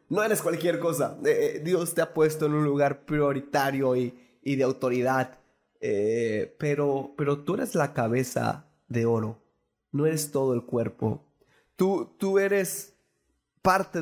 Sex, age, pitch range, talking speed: male, 20-39, 130-160 Hz, 150 wpm